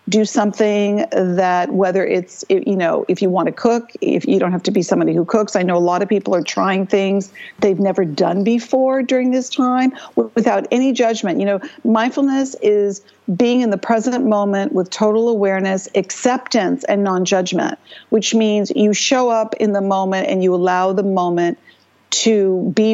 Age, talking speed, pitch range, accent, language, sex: 50-69, 185 wpm, 190-220 Hz, American, English, female